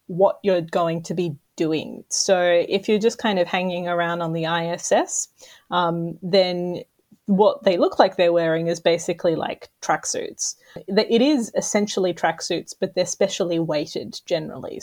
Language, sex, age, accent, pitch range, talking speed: English, female, 30-49, Australian, 170-220 Hz, 155 wpm